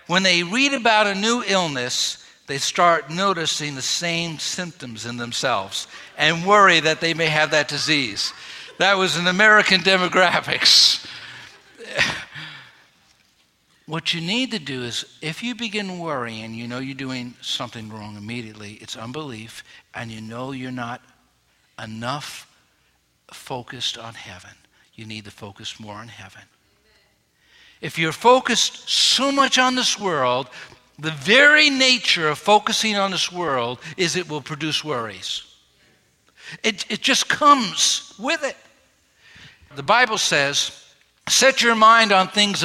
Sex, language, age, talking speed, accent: male, English, 60-79, 140 wpm, American